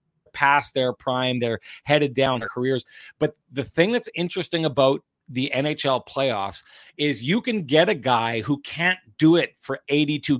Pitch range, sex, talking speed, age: 135-170 Hz, male, 165 wpm, 30-49